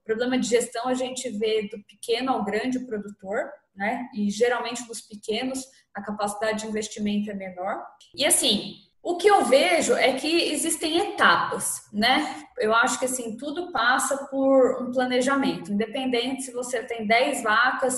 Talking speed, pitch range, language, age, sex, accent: 160 wpm, 215-265 Hz, Portuguese, 10-29, female, Brazilian